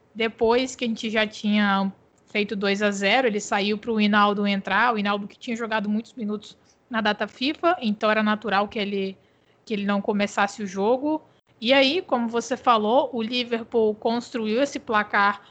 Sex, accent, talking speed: female, Brazilian, 180 wpm